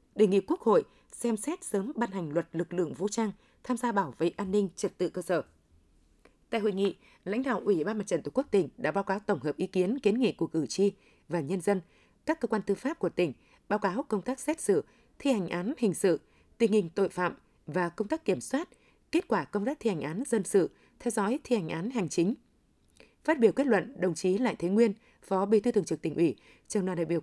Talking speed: 250 wpm